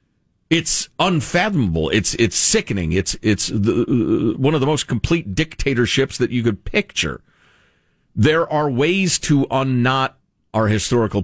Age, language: 50-69, English